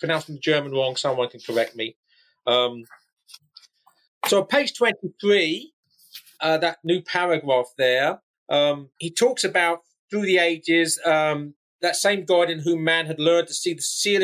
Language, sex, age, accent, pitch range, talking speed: English, male, 40-59, British, 140-190 Hz, 155 wpm